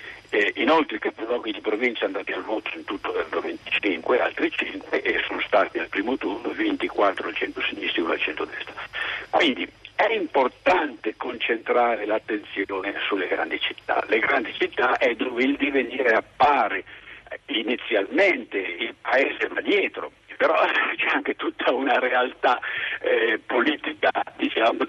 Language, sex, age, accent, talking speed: Italian, male, 60-79, native, 140 wpm